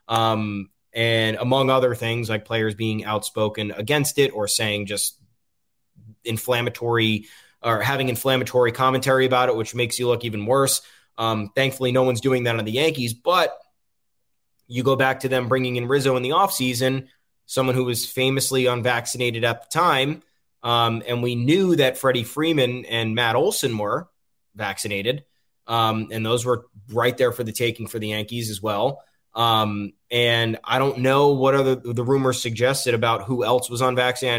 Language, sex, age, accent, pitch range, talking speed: English, male, 20-39, American, 110-130 Hz, 175 wpm